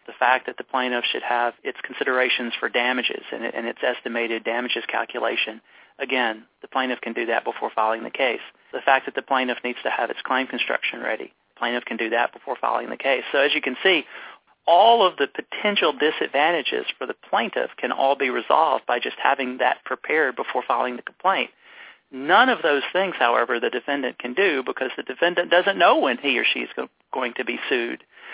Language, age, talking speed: English, 40-59, 210 wpm